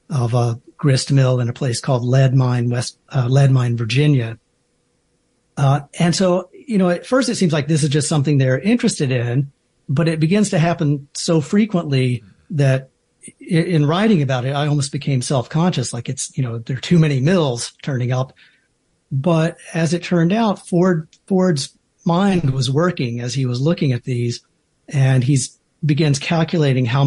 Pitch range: 130-155 Hz